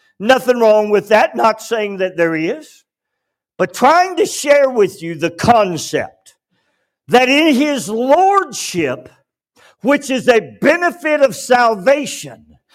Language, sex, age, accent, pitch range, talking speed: English, male, 60-79, American, 210-300 Hz, 125 wpm